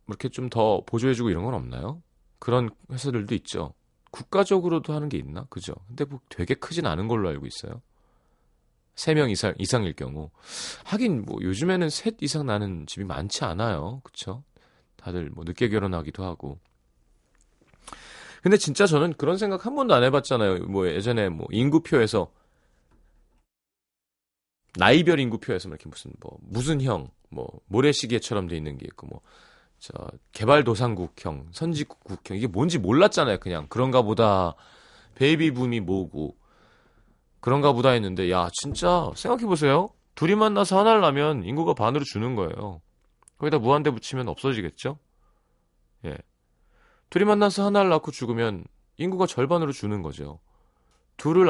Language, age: Korean, 30-49